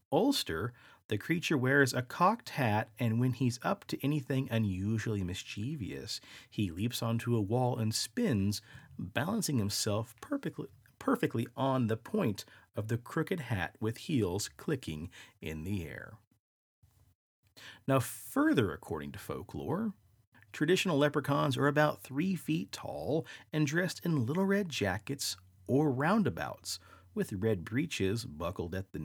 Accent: American